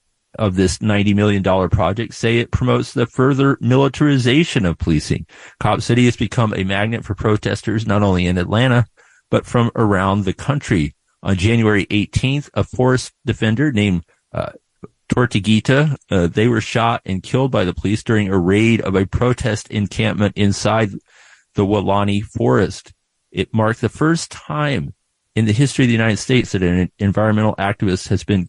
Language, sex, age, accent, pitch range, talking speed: English, male, 40-59, American, 100-120 Hz, 160 wpm